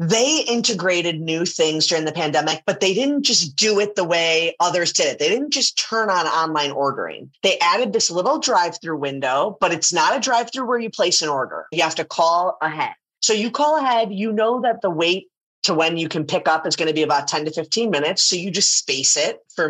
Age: 30-49